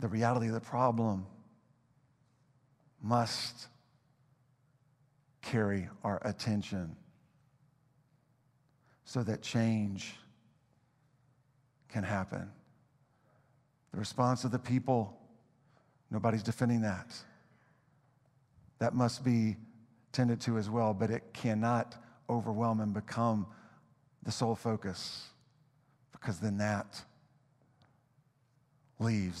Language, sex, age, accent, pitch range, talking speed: English, male, 50-69, American, 110-140 Hz, 85 wpm